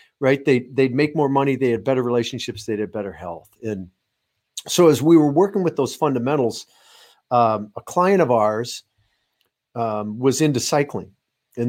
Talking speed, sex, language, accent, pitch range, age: 170 wpm, male, English, American, 115-150 Hz, 40-59